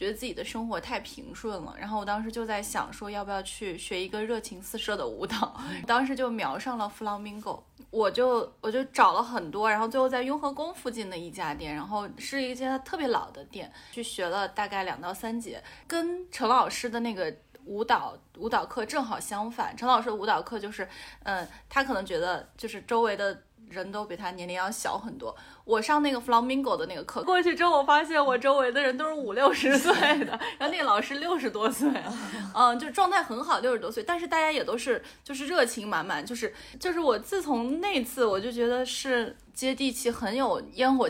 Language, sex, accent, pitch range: Chinese, female, native, 215-275 Hz